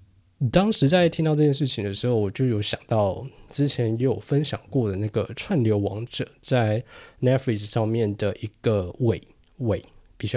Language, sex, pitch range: Chinese, male, 105-135 Hz